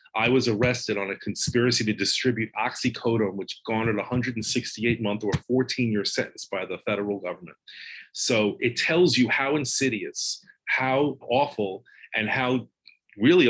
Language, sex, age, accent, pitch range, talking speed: English, male, 30-49, American, 105-130 Hz, 135 wpm